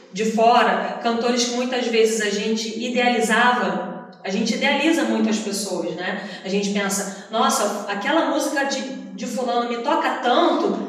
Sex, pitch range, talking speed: female, 220-285 Hz, 150 wpm